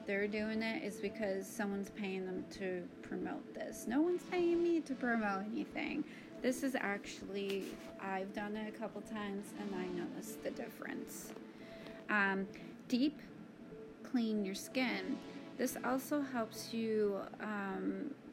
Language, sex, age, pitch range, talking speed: English, female, 30-49, 200-245 Hz, 140 wpm